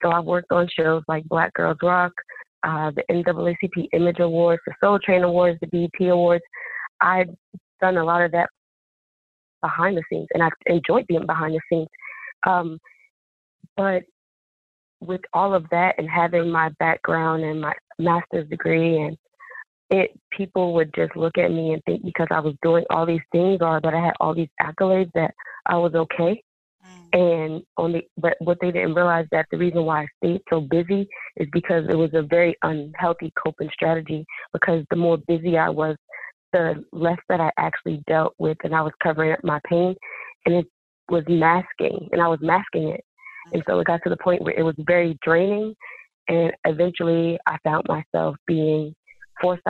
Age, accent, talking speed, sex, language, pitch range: 30-49, American, 185 wpm, female, English, 160-175 Hz